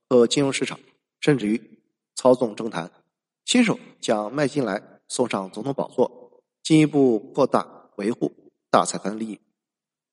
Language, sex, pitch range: Chinese, male, 110-155 Hz